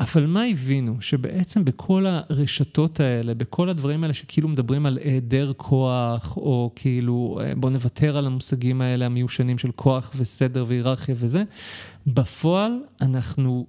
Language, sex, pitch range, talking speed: Hebrew, male, 130-170 Hz, 130 wpm